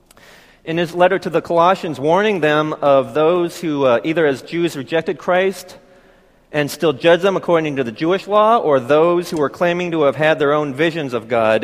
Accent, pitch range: American, 130-165 Hz